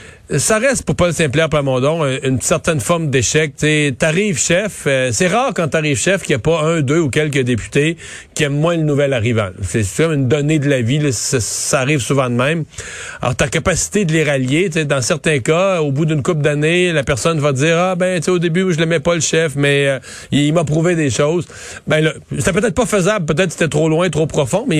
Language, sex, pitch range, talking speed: French, male, 130-160 Hz, 245 wpm